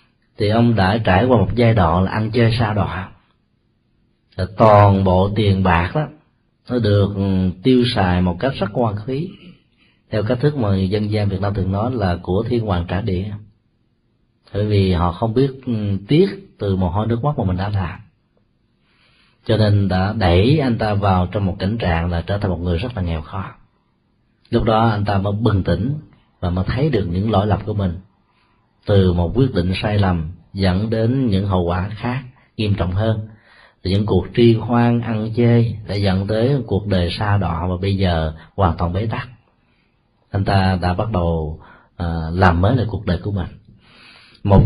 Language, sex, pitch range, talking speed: Vietnamese, male, 95-115 Hz, 190 wpm